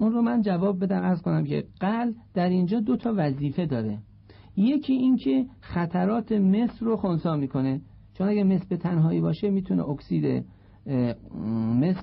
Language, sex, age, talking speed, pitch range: Persian, male, 50-69, 155 wpm, 130-190 Hz